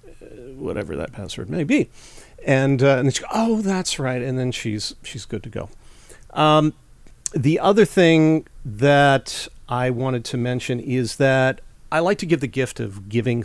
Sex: male